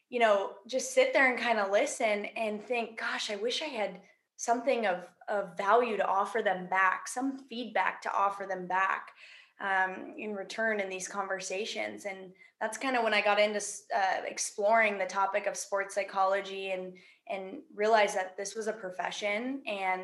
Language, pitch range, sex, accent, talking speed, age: English, 190-220 Hz, female, American, 175 wpm, 20-39